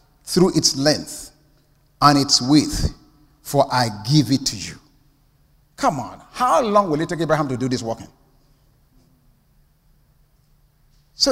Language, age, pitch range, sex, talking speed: English, 50-69, 140-220 Hz, male, 135 wpm